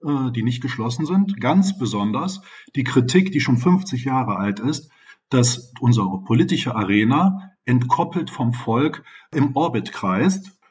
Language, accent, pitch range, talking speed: German, German, 120-170 Hz, 135 wpm